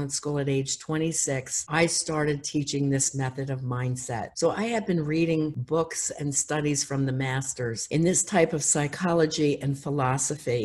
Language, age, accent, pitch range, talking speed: English, 50-69, American, 135-160 Hz, 165 wpm